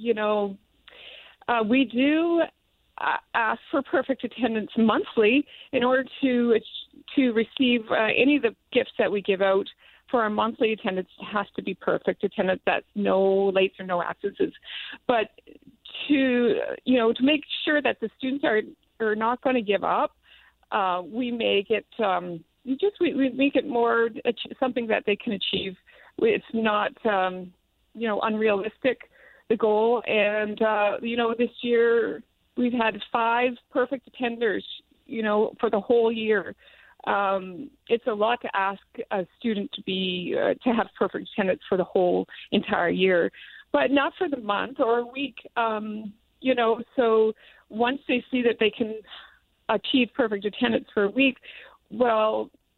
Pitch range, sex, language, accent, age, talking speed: 210-260 Hz, female, English, American, 40-59, 165 wpm